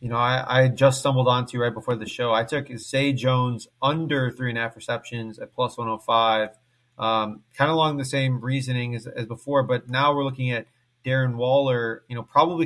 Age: 30-49